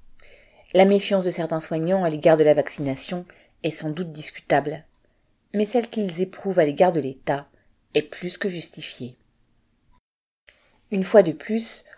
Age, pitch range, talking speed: 40-59, 140-185 Hz, 150 wpm